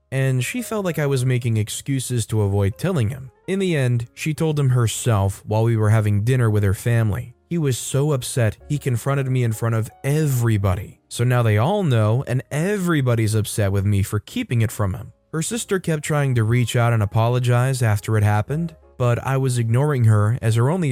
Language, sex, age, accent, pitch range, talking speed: English, male, 20-39, American, 110-135 Hz, 210 wpm